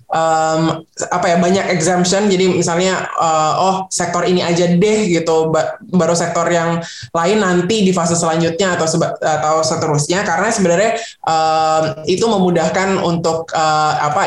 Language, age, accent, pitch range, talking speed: Indonesian, 20-39, native, 160-195 Hz, 145 wpm